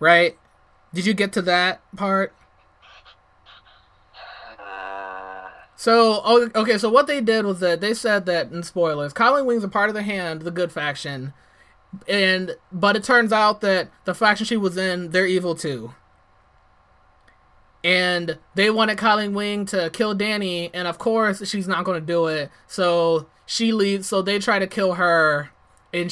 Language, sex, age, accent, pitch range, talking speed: English, male, 20-39, American, 140-200 Hz, 165 wpm